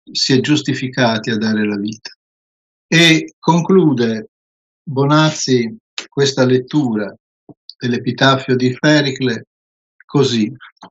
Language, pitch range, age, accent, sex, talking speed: Italian, 120-155 Hz, 50-69, native, male, 90 wpm